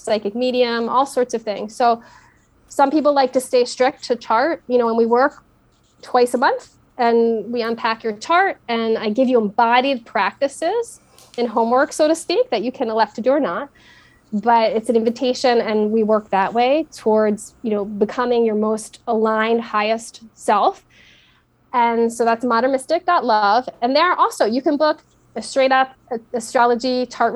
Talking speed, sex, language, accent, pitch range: 180 wpm, female, English, American, 230-280 Hz